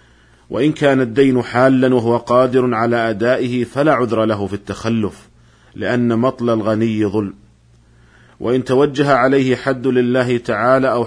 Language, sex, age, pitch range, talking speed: Arabic, male, 50-69, 110-125 Hz, 130 wpm